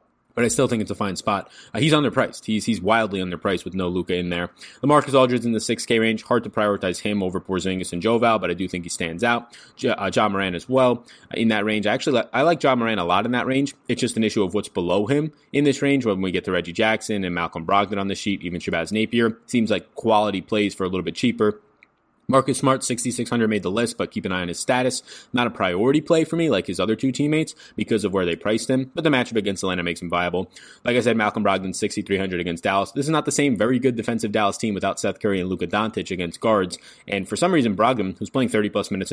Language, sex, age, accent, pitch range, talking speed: English, male, 20-39, American, 95-120 Hz, 260 wpm